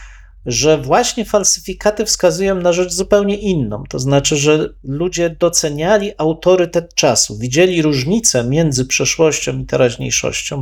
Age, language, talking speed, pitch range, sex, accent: 40-59, Polish, 120 wpm, 130-170 Hz, male, native